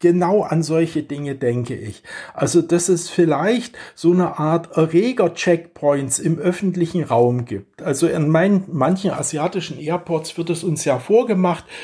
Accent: German